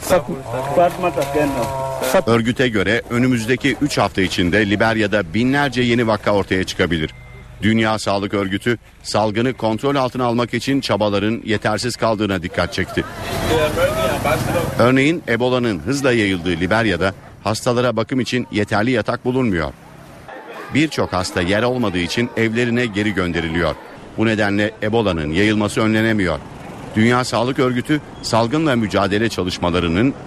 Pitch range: 100-120 Hz